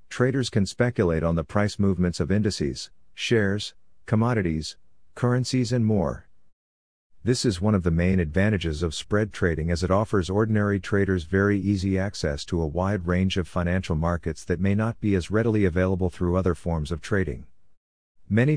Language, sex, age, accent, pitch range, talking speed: English, male, 50-69, American, 85-100 Hz, 170 wpm